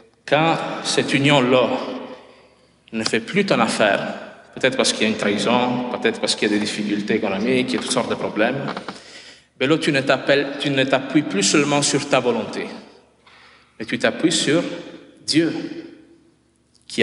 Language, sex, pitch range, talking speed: French, male, 105-145 Hz, 170 wpm